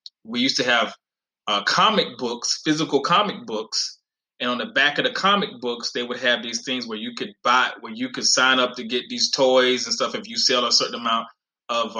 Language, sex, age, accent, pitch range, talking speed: English, male, 20-39, American, 130-165 Hz, 225 wpm